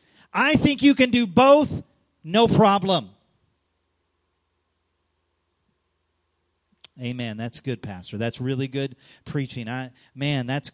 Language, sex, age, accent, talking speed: English, male, 40-59, American, 105 wpm